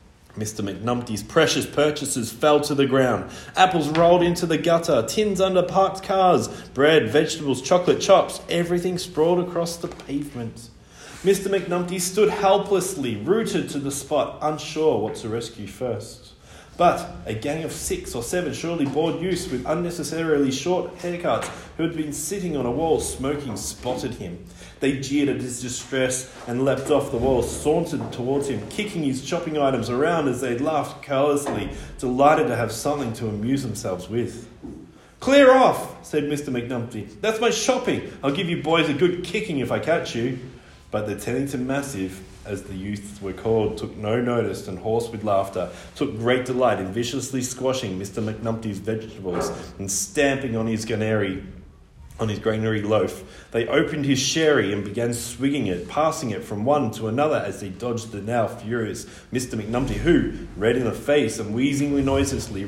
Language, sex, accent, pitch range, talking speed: English, male, Australian, 110-155 Hz, 170 wpm